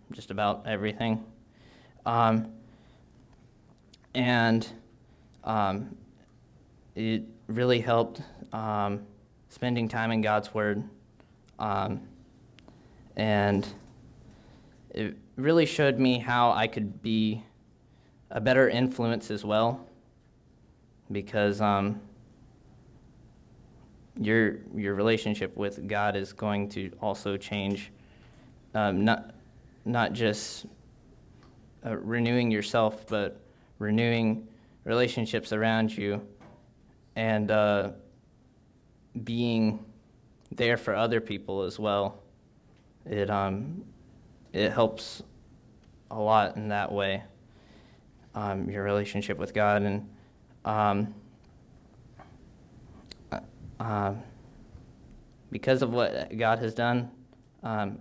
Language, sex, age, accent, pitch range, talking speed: English, male, 20-39, American, 105-115 Hz, 90 wpm